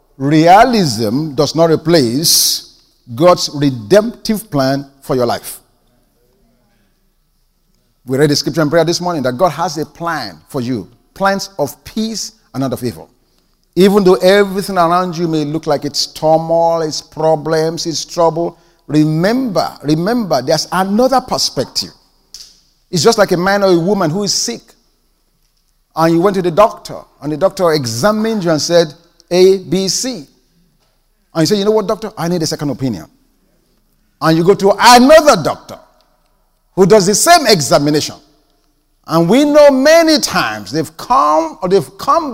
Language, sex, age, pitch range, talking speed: English, male, 50-69, 155-215 Hz, 155 wpm